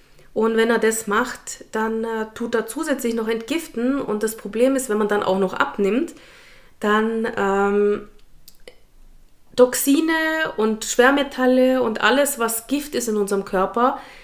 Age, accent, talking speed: 30-49, German, 150 wpm